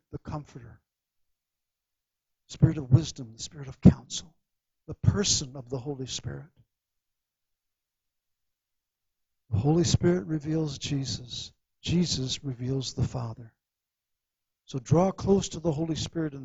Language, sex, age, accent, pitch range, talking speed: English, male, 60-79, American, 105-155 Hz, 115 wpm